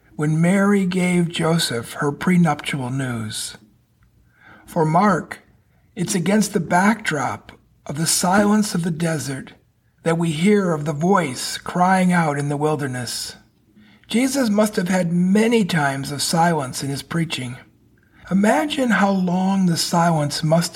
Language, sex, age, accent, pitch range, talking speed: English, male, 50-69, American, 145-195 Hz, 135 wpm